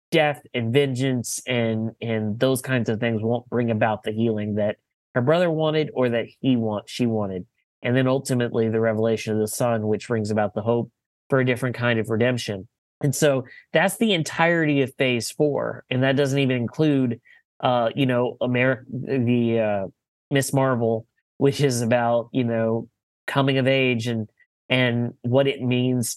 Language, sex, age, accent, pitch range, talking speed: English, male, 30-49, American, 115-140 Hz, 175 wpm